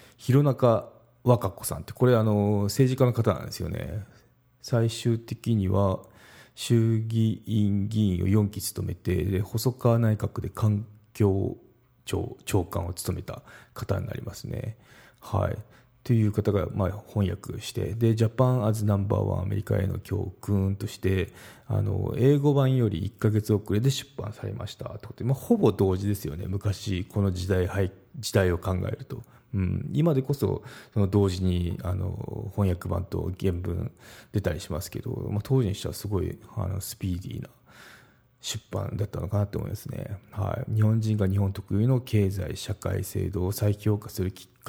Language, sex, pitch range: Japanese, male, 95-120 Hz